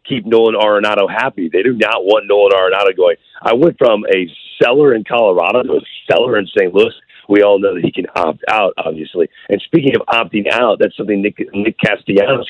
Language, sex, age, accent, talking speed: English, male, 40-59, American, 205 wpm